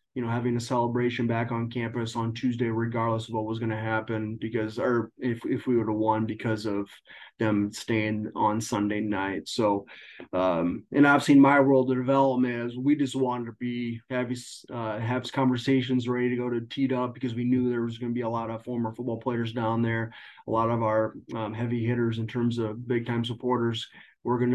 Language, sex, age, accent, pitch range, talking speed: English, male, 30-49, American, 115-130 Hz, 215 wpm